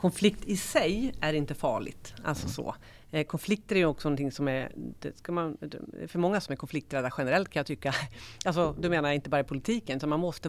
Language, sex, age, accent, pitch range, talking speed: Swedish, female, 40-59, native, 135-175 Hz, 210 wpm